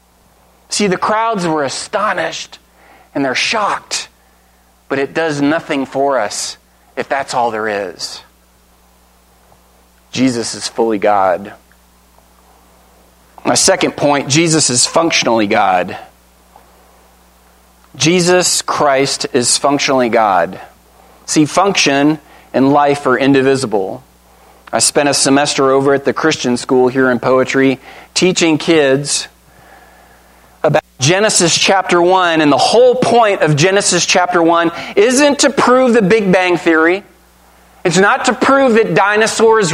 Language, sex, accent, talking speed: English, male, American, 120 wpm